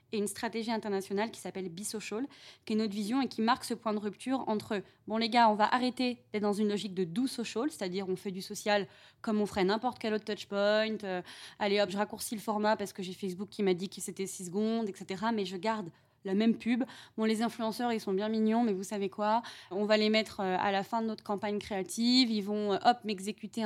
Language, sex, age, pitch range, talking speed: French, female, 20-39, 200-235 Hz, 240 wpm